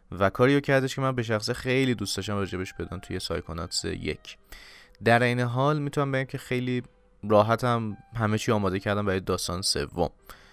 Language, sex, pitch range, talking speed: Persian, male, 90-125 Hz, 175 wpm